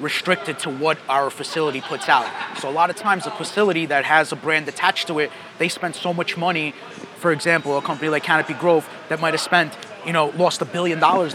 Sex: male